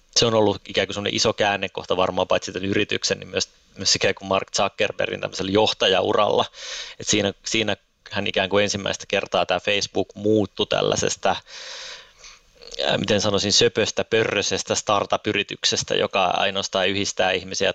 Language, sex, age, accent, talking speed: Finnish, male, 20-39, native, 125 wpm